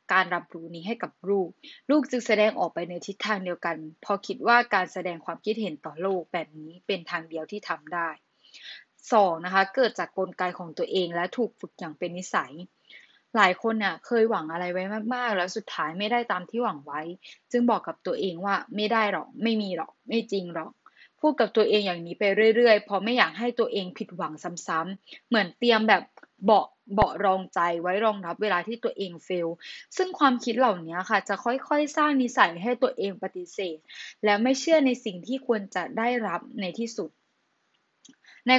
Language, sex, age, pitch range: Thai, female, 10-29, 175-235 Hz